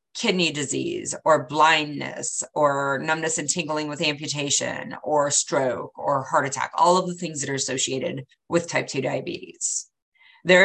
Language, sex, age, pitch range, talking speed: English, female, 30-49, 140-180 Hz, 150 wpm